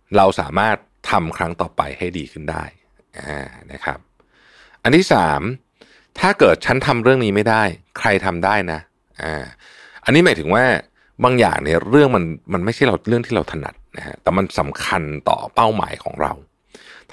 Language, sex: Thai, male